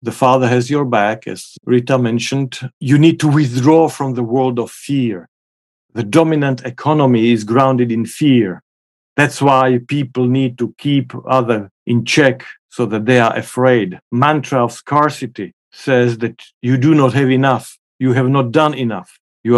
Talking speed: 165 wpm